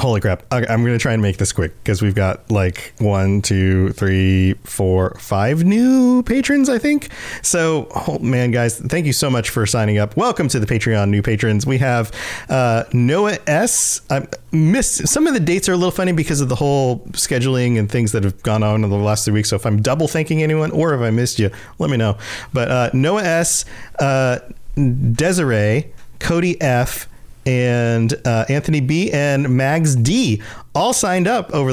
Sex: male